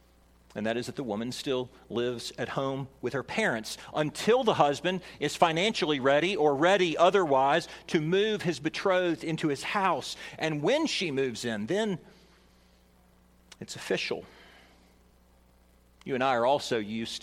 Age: 40-59